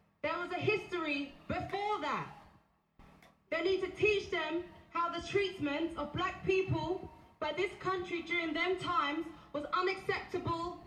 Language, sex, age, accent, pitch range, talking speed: English, female, 20-39, British, 275-370 Hz, 140 wpm